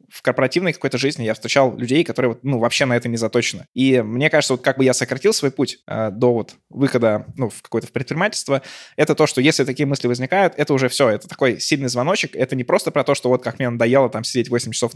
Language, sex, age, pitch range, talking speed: Russian, male, 20-39, 120-140 Hz, 235 wpm